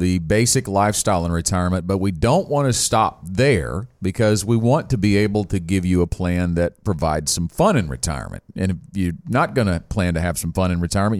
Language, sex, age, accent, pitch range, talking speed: English, male, 40-59, American, 95-120 Hz, 225 wpm